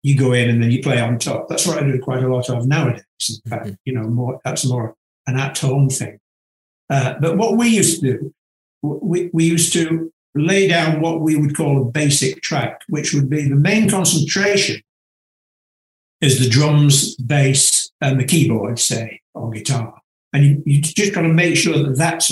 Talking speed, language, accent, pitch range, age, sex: 200 wpm, English, British, 130-165 Hz, 60-79, male